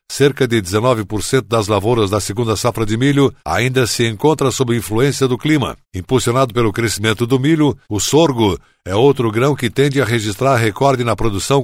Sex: male